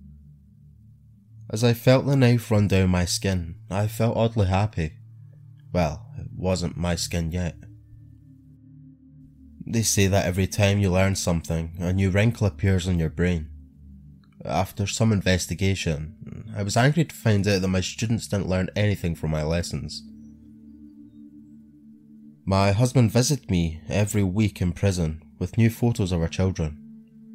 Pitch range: 80-110 Hz